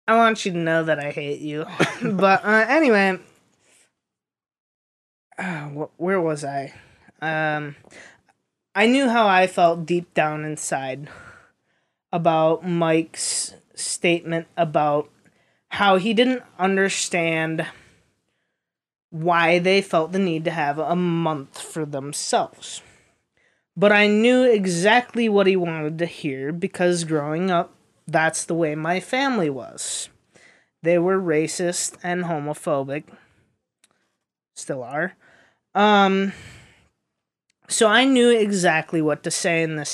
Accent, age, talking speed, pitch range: American, 20-39, 120 wpm, 155-195 Hz